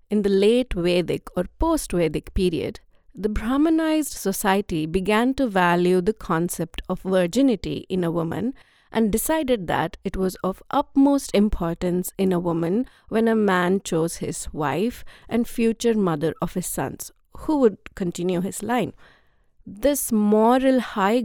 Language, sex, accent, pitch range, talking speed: English, female, Indian, 180-235 Hz, 145 wpm